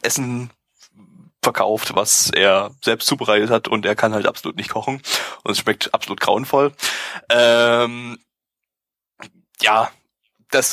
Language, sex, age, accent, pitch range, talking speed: German, male, 20-39, German, 105-125 Hz, 125 wpm